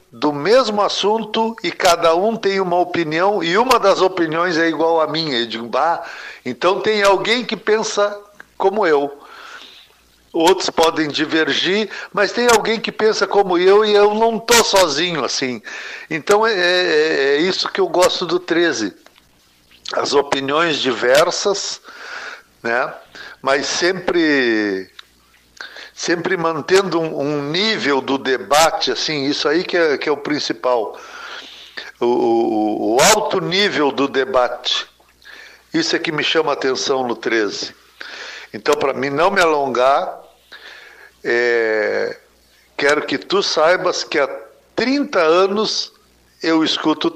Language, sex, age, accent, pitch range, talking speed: Portuguese, male, 60-79, Brazilian, 140-210 Hz, 135 wpm